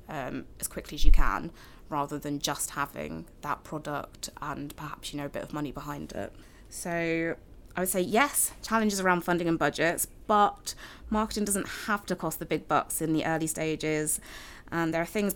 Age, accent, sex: 20-39, British, female